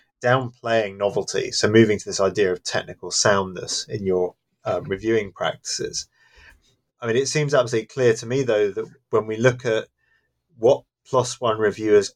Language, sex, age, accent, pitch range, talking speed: English, male, 30-49, British, 100-125 Hz, 165 wpm